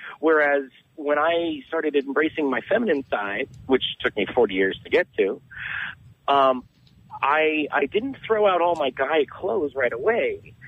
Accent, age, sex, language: American, 40-59, male, English